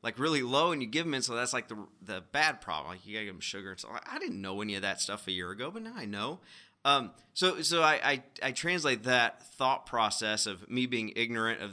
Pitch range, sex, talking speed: 110-150 Hz, male, 265 wpm